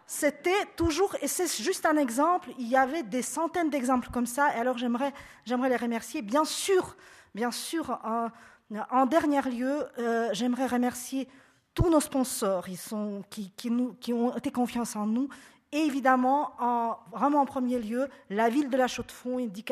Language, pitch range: French, 235-275 Hz